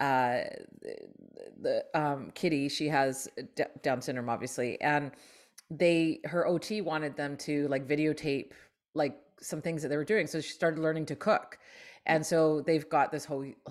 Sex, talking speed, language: female, 165 wpm, English